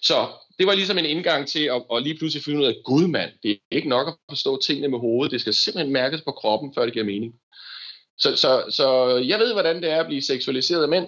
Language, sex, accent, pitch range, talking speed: Danish, male, native, 105-150 Hz, 255 wpm